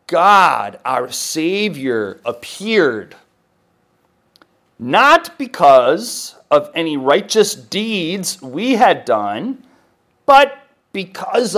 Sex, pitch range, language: male, 125-190 Hz, English